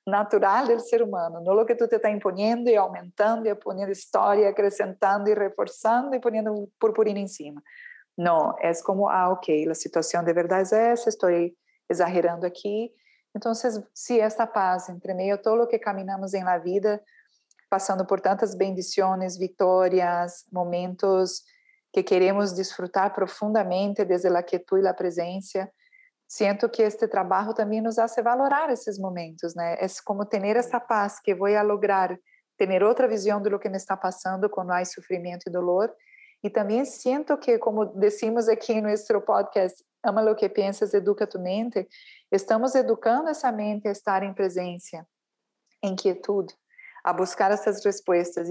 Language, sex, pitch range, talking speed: Spanish, female, 185-225 Hz, 165 wpm